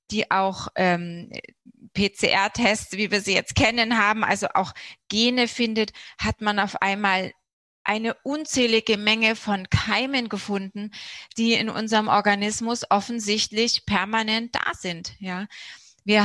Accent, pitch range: German, 205-240 Hz